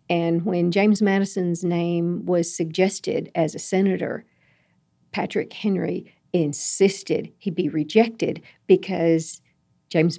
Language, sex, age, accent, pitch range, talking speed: English, female, 50-69, American, 165-210 Hz, 105 wpm